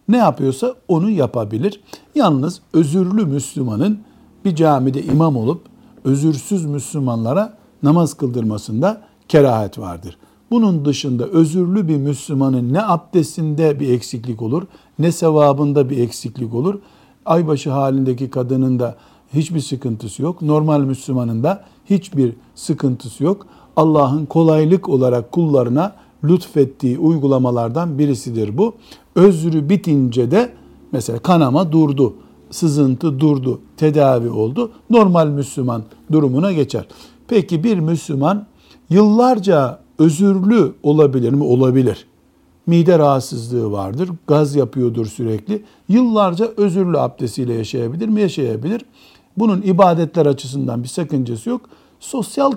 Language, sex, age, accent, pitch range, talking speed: Turkish, male, 60-79, native, 125-180 Hz, 105 wpm